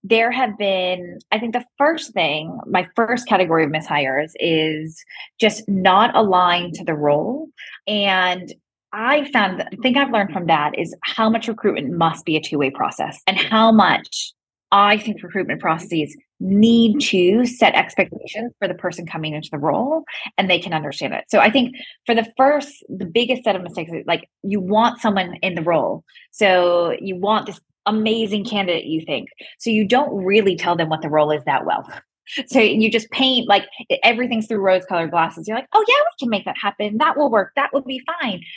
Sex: female